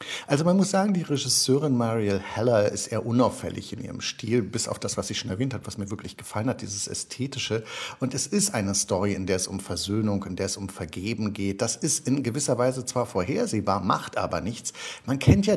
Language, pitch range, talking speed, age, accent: German, 105-130 Hz, 225 wpm, 50-69, German